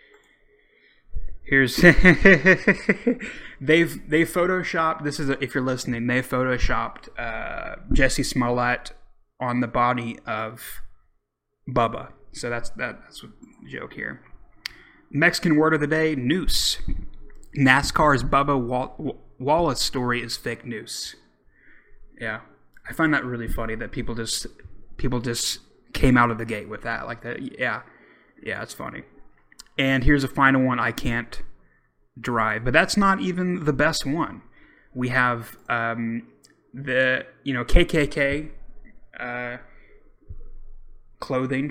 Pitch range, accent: 120-155 Hz, American